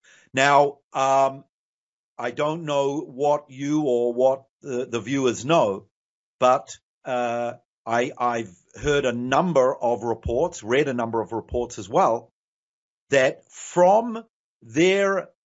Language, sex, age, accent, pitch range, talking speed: English, male, 50-69, Australian, 135-185 Hz, 120 wpm